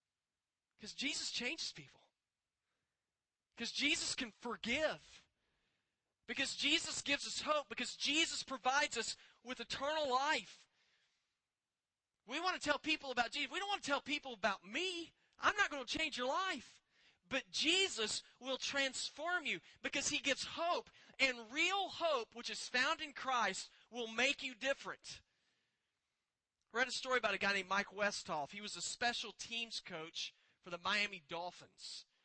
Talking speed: 155 wpm